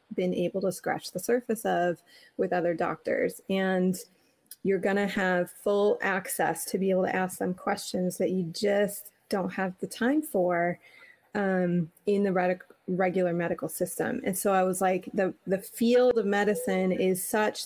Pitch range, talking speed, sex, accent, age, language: 185-215 Hz, 170 wpm, female, American, 30-49, English